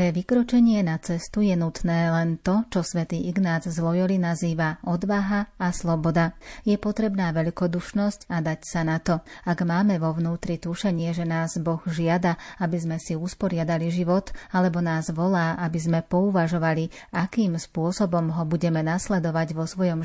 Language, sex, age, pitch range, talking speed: Slovak, female, 30-49, 165-180 Hz, 155 wpm